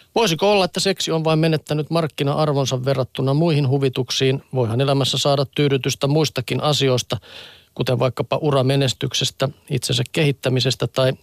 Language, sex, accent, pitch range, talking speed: Finnish, male, native, 130-155 Hz, 125 wpm